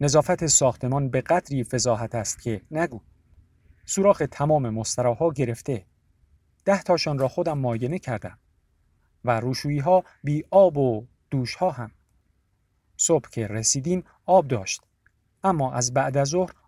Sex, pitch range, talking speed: male, 115-150 Hz, 120 wpm